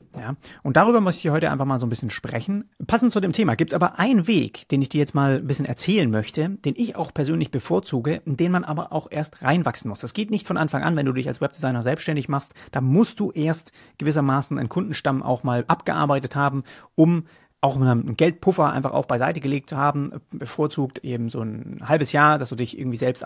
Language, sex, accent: German, male, German